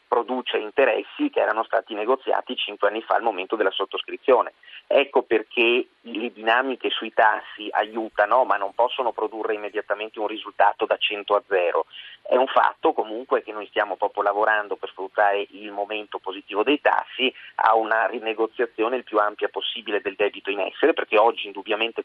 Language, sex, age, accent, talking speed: Italian, male, 40-59, native, 165 wpm